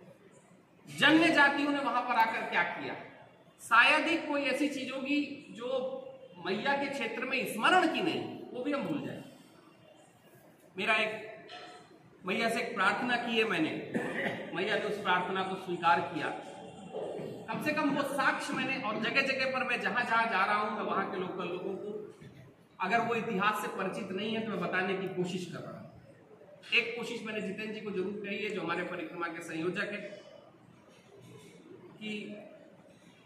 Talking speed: 170 wpm